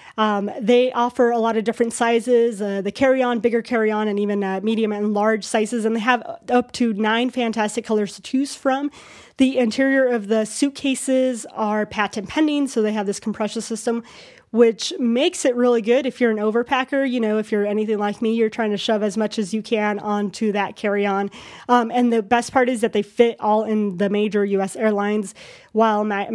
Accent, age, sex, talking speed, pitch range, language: American, 20-39, female, 215 wpm, 210-245 Hz, English